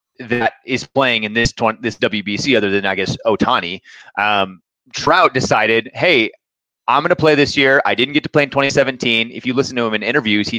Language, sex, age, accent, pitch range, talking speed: English, male, 30-49, American, 110-145 Hz, 215 wpm